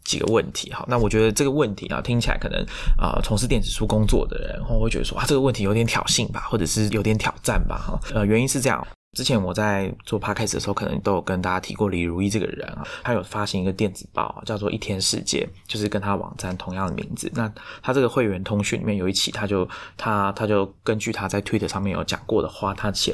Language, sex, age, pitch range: Chinese, male, 20-39, 100-115 Hz